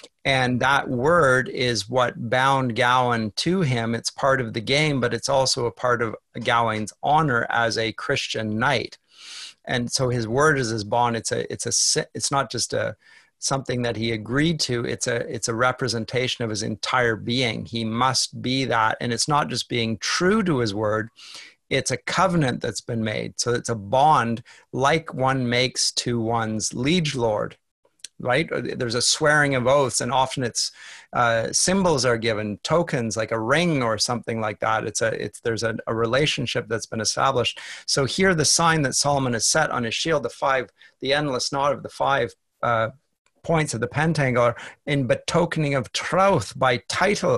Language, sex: English, male